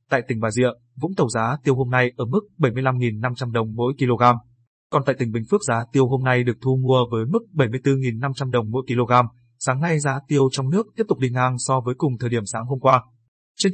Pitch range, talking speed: 120-140 Hz, 230 wpm